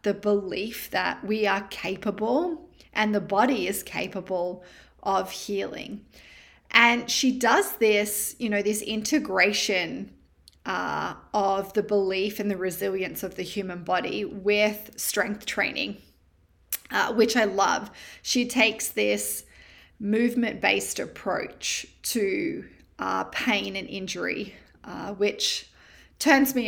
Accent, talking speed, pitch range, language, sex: Australian, 120 wpm, 190-235 Hz, English, female